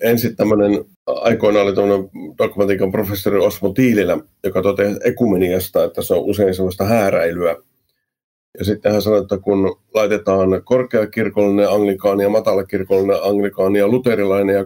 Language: Finnish